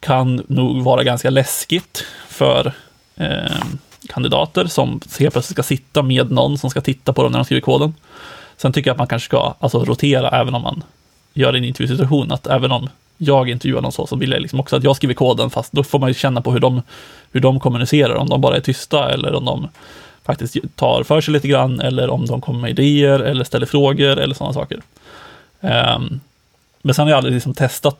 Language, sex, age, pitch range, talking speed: Swedish, male, 20-39, 125-140 Hz, 215 wpm